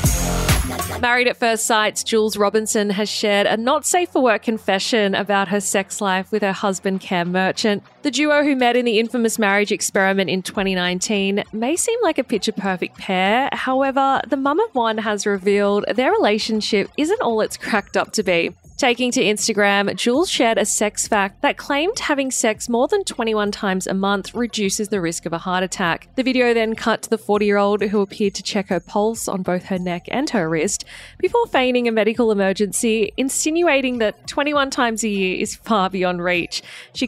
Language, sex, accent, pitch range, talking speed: English, female, Australian, 195-250 Hz, 180 wpm